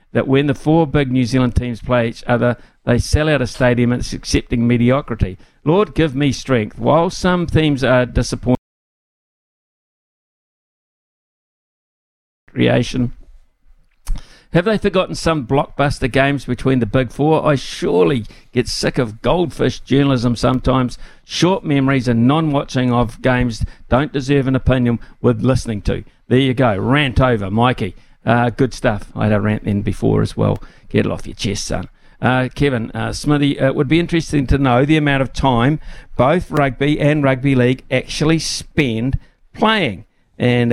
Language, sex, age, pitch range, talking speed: English, male, 60-79, 120-145 Hz, 155 wpm